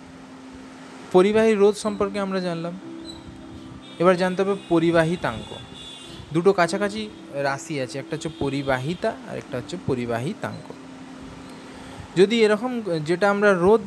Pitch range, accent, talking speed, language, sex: 125-185 Hz, native, 100 wpm, Bengali, male